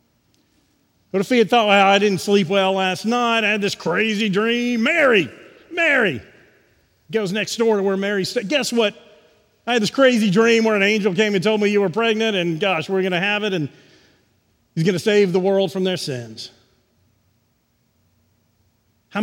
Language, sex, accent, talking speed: English, male, American, 190 wpm